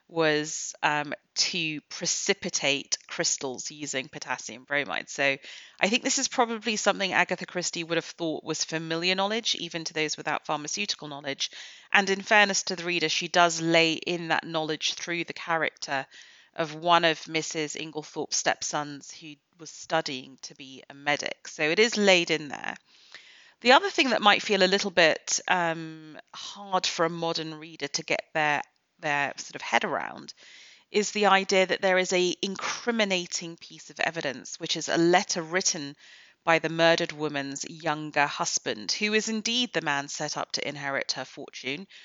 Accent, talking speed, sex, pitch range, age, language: British, 170 wpm, female, 155-190 Hz, 30-49, English